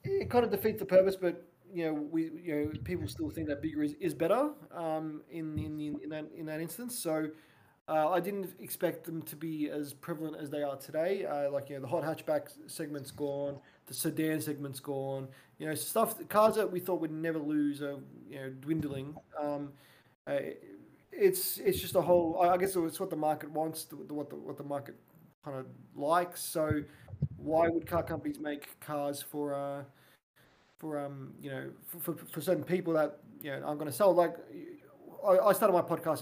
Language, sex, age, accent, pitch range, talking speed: English, male, 20-39, Australian, 145-170 Hz, 200 wpm